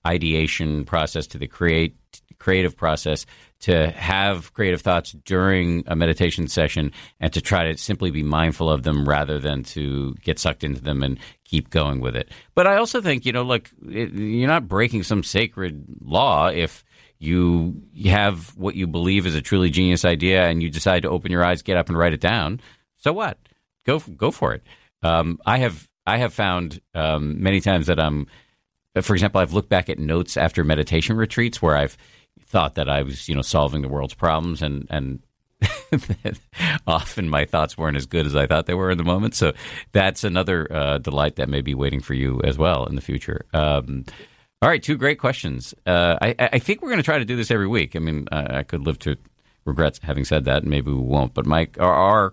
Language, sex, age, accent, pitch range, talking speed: English, male, 50-69, American, 75-95 Hz, 210 wpm